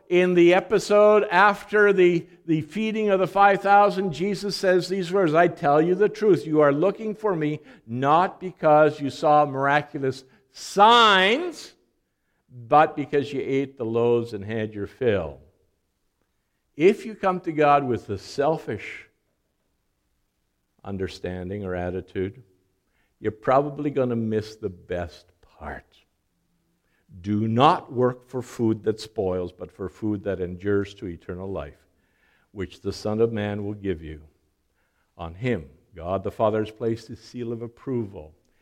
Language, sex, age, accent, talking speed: English, male, 50-69, American, 145 wpm